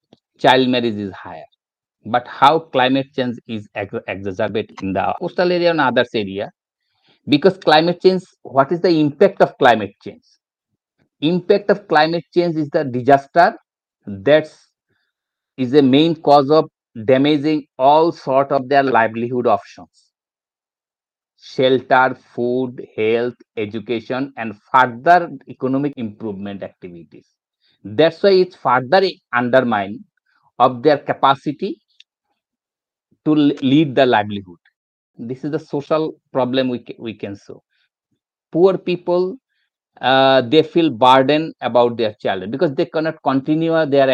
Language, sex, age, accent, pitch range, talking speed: English, male, 50-69, Indian, 125-165 Hz, 125 wpm